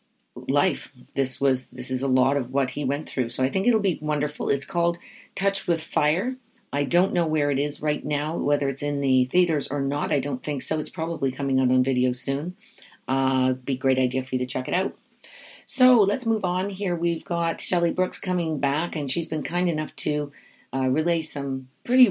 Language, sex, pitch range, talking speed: English, female, 130-155 Hz, 215 wpm